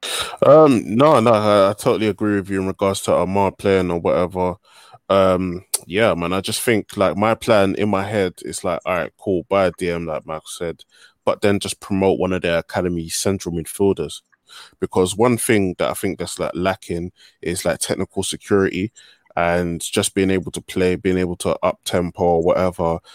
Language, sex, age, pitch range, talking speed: English, male, 20-39, 90-100 Hz, 195 wpm